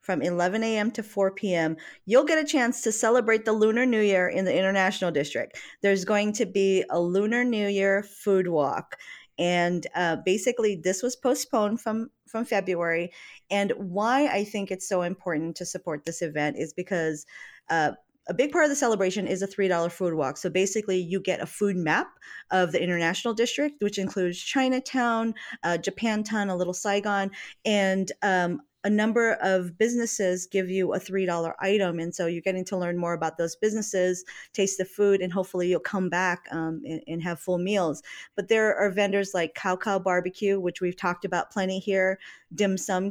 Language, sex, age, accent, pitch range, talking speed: English, female, 40-59, American, 180-220 Hz, 185 wpm